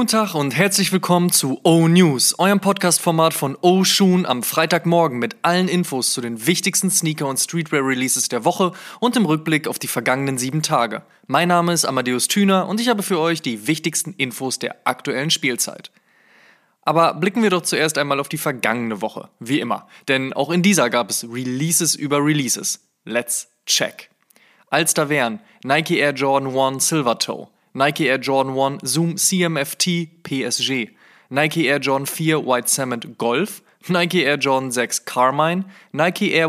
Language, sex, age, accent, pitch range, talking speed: German, male, 20-39, German, 130-175 Hz, 170 wpm